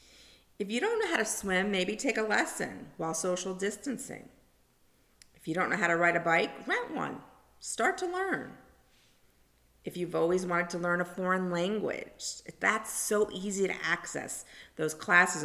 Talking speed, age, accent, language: 170 wpm, 50-69, American, English